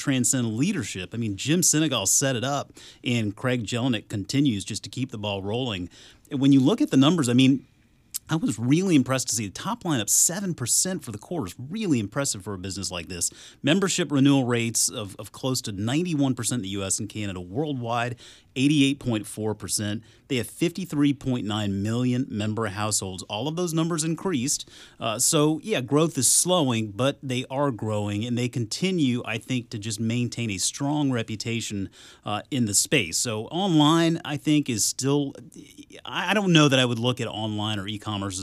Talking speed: 180 wpm